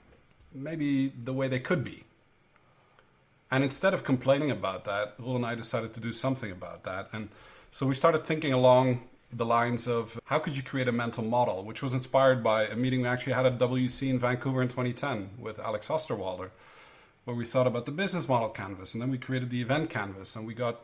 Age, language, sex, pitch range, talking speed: 40-59, English, male, 115-135 Hz, 210 wpm